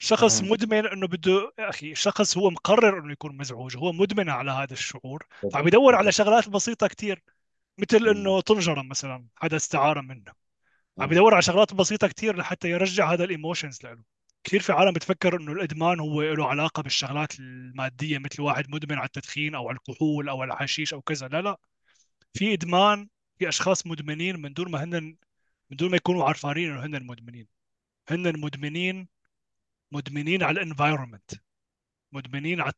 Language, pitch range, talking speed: Arabic, 140-190 Hz, 165 wpm